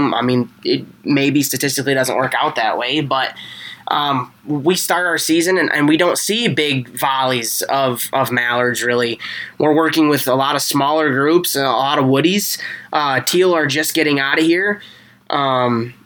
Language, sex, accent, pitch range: English, male, American, 130-155 Hz